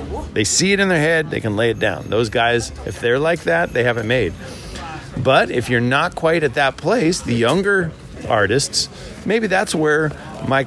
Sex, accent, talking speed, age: male, American, 195 wpm, 50-69